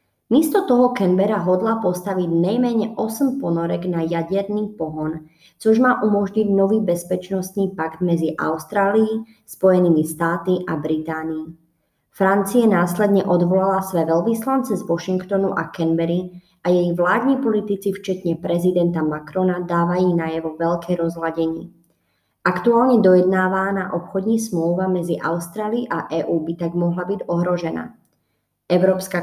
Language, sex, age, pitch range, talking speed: Czech, male, 20-39, 170-195 Hz, 115 wpm